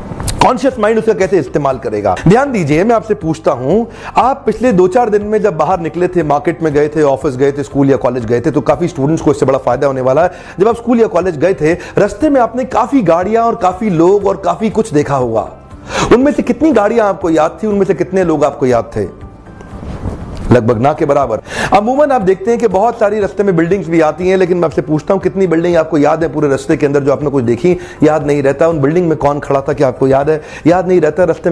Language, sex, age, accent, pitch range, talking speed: Hindi, male, 40-59, native, 150-200 Hz, 230 wpm